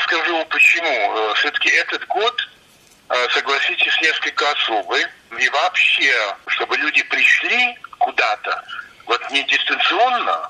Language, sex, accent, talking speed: Russian, male, native, 95 wpm